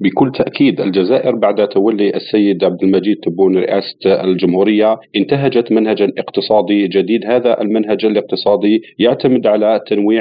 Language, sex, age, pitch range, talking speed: Arabic, male, 40-59, 110-130 Hz, 125 wpm